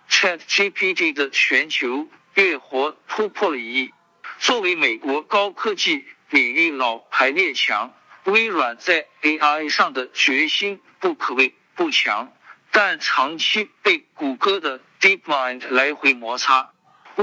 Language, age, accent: Chinese, 50-69, native